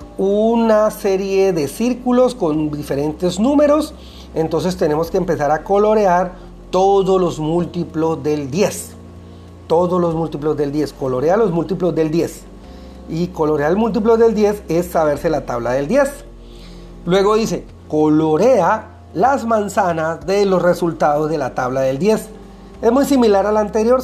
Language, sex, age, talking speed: Spanish, male, 40-59, 145 wpm